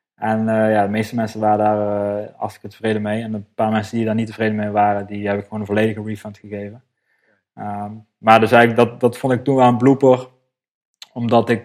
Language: Dutch